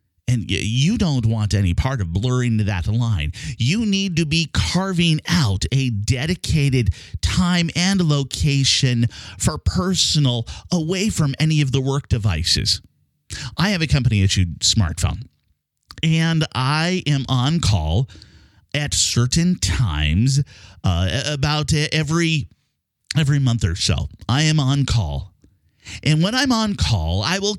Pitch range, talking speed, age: 100-160 Hz, 135 wpm, 30-49